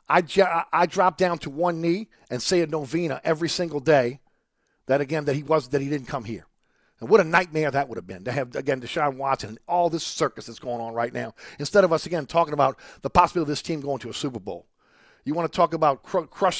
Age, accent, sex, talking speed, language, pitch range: 50-69, American, male, 240 wpm, English, 130-170 Hz